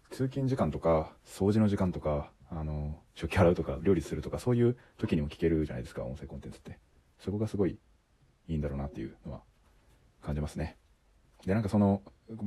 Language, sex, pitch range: Japanese, male, 75-100 Hz